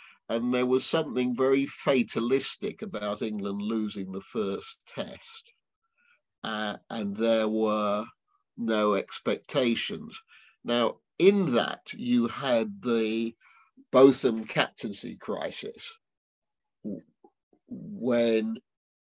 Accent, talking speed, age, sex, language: British, 90 wpm, 50-69, male, English